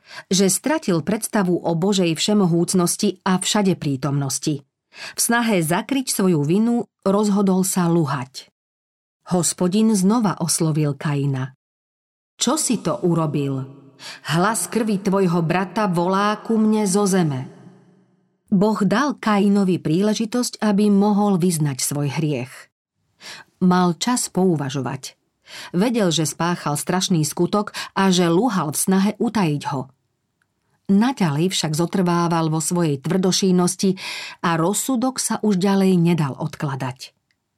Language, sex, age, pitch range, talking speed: Slovak, female, 40-59, 165-200 Hz, 115 wpm